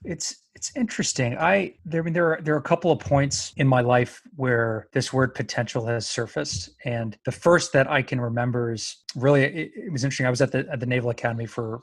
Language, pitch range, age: English, 120-135 Hz, 30-49